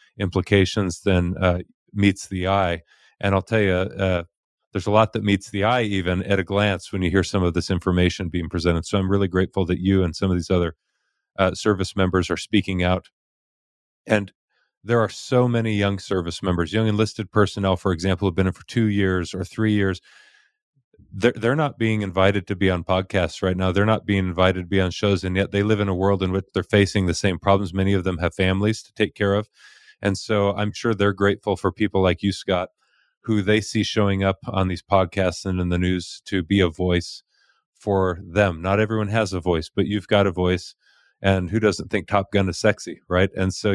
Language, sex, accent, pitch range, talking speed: English, male, American, 90-105 Hz, 220 wpm